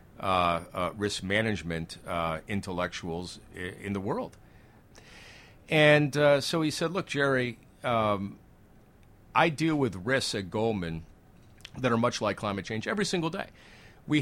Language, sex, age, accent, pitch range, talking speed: English, male, 50-69, American, 100-145 Hz, 140 wpm